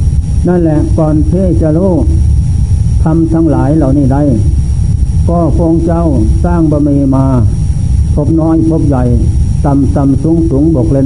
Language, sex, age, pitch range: Thai, male, 60-79, 95-150 Hz